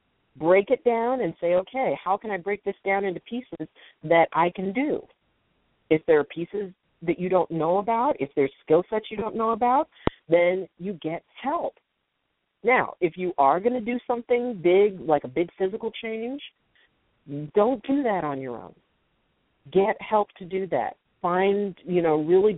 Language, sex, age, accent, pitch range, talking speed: English, female, 50-69, American, 150-200 Hz, 180 wpm